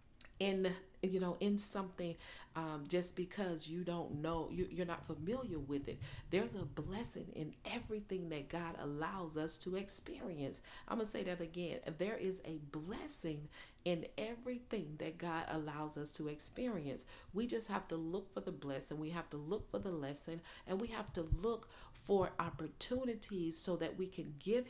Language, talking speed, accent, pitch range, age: English, 175 wpm, American, 155-195 Hz, 40-59